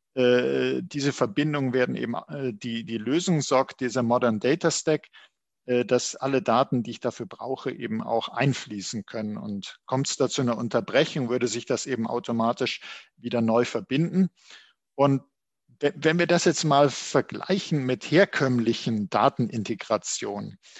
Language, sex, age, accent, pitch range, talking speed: German, male, 50-69, German, 120-150 Hz, 145 wpm